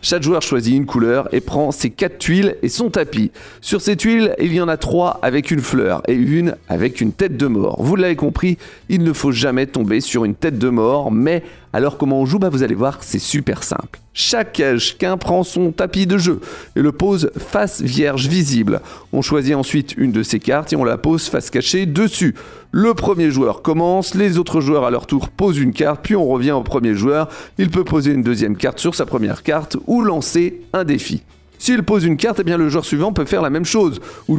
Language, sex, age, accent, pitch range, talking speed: French, male, 40-59, French, 135-190 Hz, 230 wpm